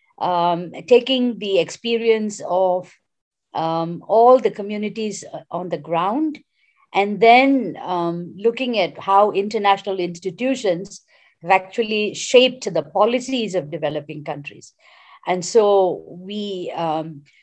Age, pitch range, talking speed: 50-69, 170-210 Hz, 110 wpm